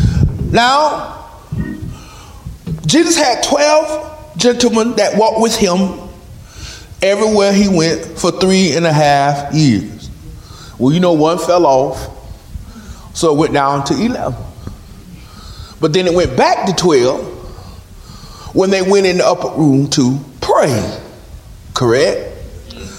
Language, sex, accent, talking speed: English, male, American, 125 wpm